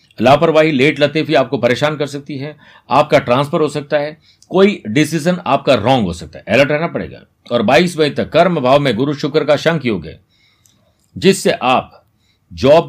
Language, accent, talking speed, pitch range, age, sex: Hindi, native, 180 wpm, 120-155 Hz, 50-69, male